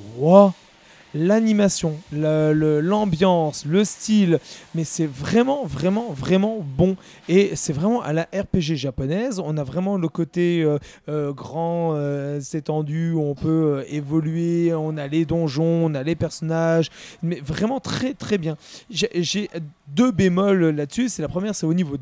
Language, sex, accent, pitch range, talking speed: French, male, French, 150-190 Hz, 155 wpm